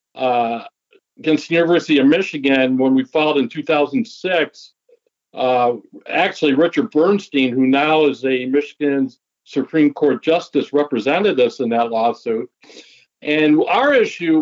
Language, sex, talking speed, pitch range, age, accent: English, male, 130 wpm, 135-165 Hz, 60-79, American